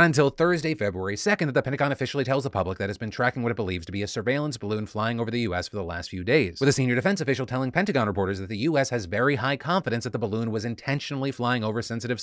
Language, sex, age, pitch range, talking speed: English, male, 30-49, 105-135 Hz, 275 wpm